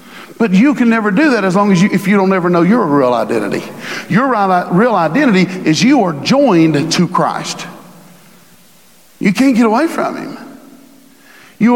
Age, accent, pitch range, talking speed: 50-69, American, 225-315 Hz, 175 wpm